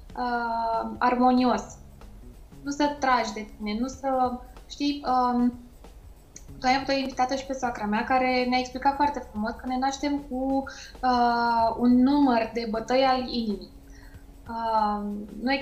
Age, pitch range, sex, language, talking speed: 20-39, 230-265 Hz, female, Romanian, 140 wpm